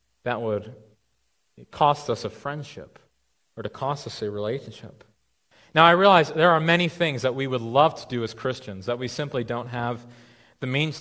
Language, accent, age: English, American, 30-49